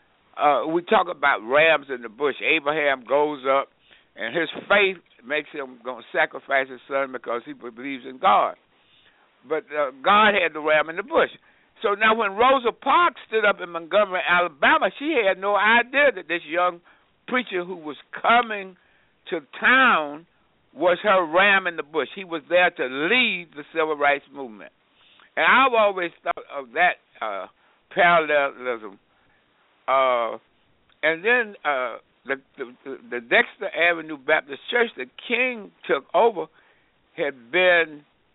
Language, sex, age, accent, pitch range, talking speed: English, male, 60-79, American, 145-220 Hz, 155 wpm